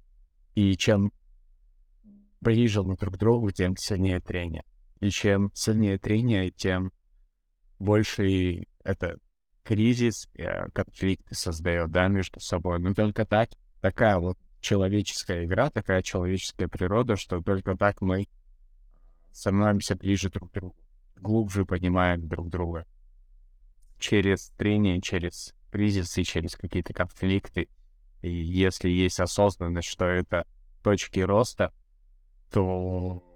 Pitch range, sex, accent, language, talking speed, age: 85-100 Hz, male, native, Russian, 115 wpm, 20-39